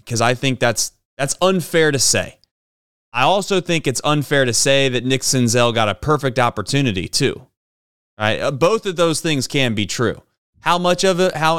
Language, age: English, 30-49